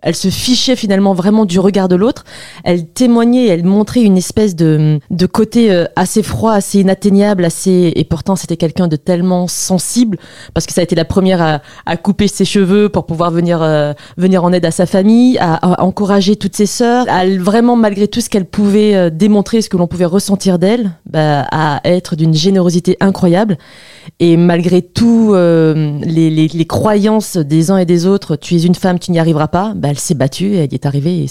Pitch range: 170-205 Hz